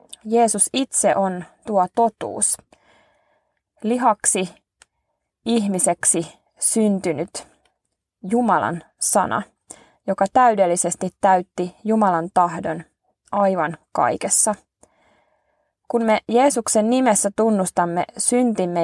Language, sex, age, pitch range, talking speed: Finnish, female, 20-39, 175-230 Hz, 75 wpm